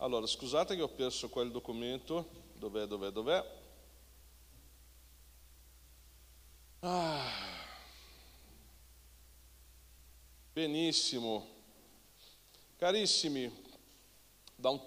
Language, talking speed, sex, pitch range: Italian, 60 wpm, male, 120-155 Hz